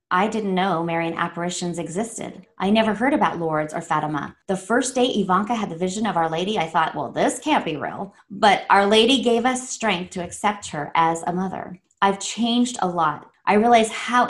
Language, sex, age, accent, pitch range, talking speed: English, female, 20-39, American, 175-225 Hz, 205 wpm